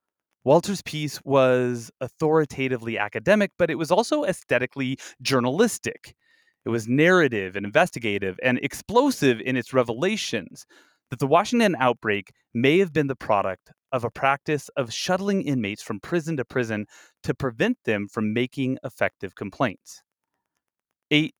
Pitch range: 115-155 Hz